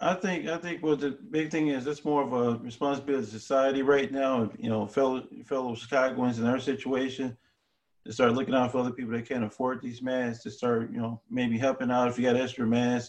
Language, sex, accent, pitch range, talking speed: English, male, American, 115-130 Hz, 230 wpm